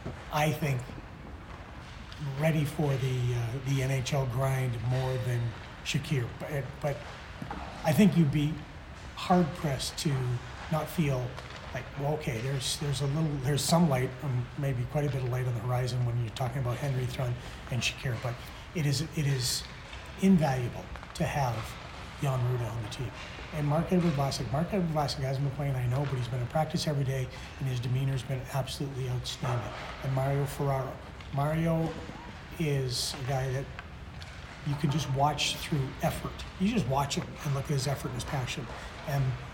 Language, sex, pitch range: English, male, 125-150 Hz